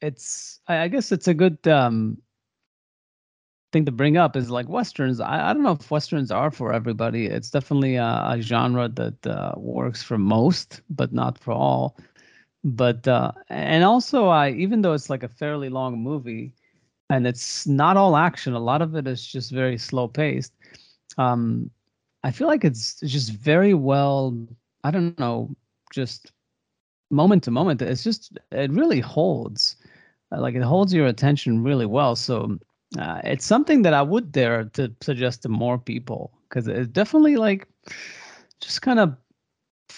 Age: 30-49